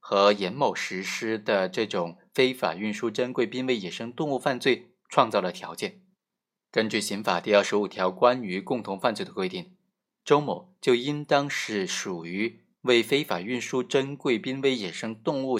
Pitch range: 105-145 Hz